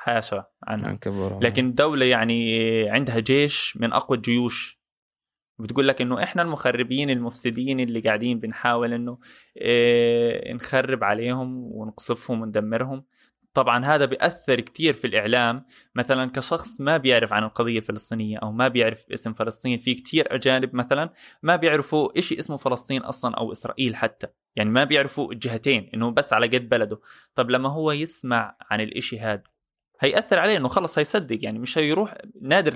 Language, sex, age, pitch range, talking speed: Arabic, male, 20-39, 120-150 Hz, 145 wpm